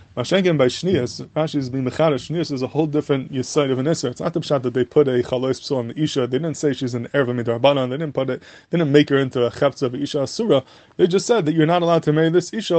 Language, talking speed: English, 270 wpm